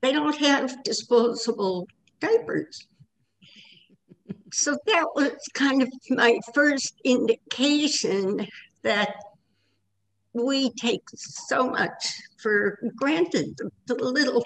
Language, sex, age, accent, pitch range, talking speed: English, female, 60-79, American, 210-260 Hz, 95 wpm